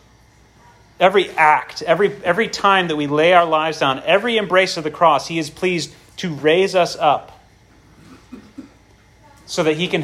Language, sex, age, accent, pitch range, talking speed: English, male, 30-49, American, 135-185 Hz, 160 wpm